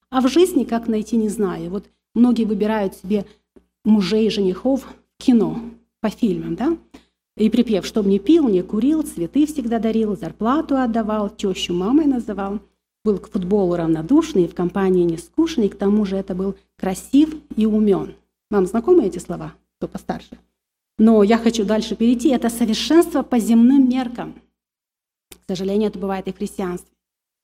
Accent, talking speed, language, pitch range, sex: native, 155 wpm, Russian, 195-240 Hz, female